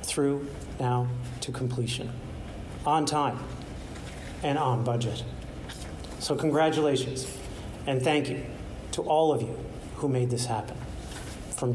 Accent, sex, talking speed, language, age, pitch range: American, male, 120 wpm, English, 40-59, 120-150 Hz